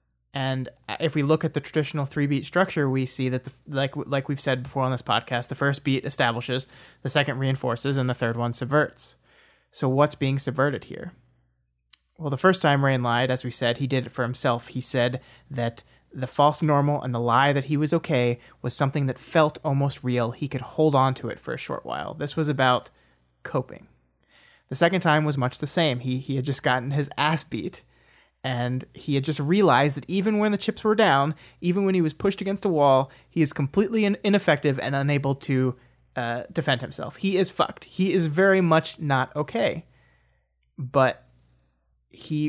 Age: 30-49